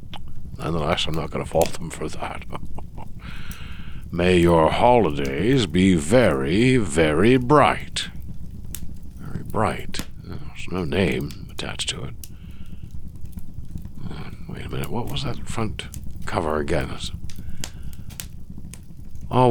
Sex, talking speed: male, 100 wpm